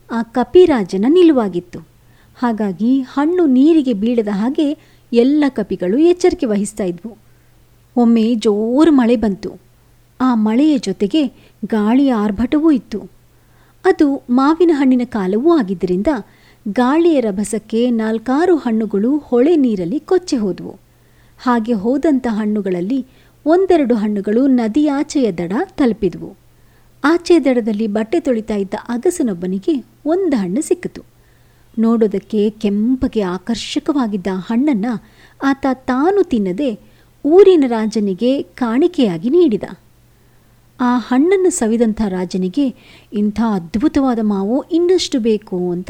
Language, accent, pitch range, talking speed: Kannada, native, 210-295 Hz, 95 wpm